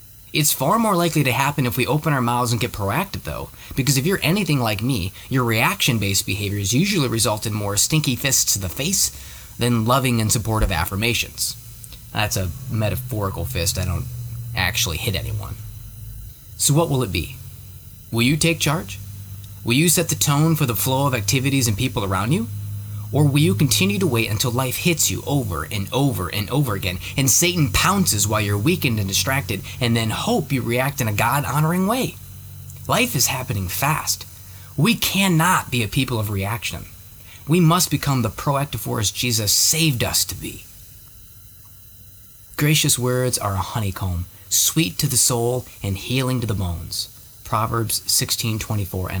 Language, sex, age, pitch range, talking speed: English, male, 30-49, 100-135 Hz, 170 wpm